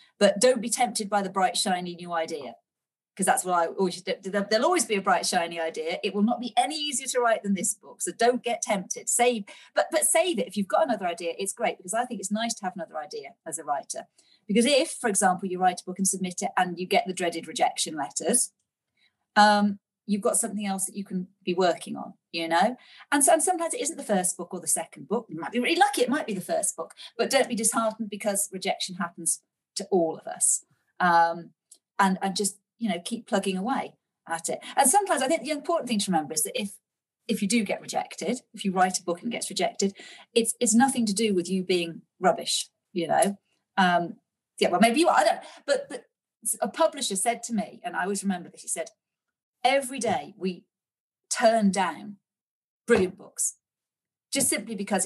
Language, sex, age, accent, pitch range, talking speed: English, female, 40-59, British, 185-245 Hz, 225 wpm